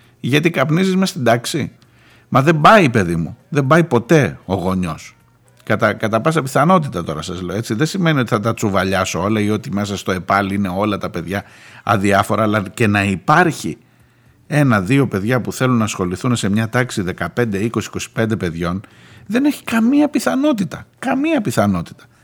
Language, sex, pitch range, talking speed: Greek, male, 100-150 Hz, 165 wpm